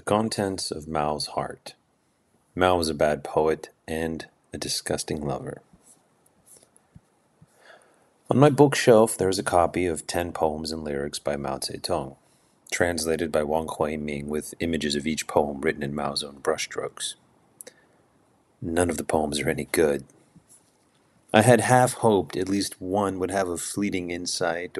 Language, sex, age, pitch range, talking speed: English, male, 30-49, 75-100 Hz, 150 wpm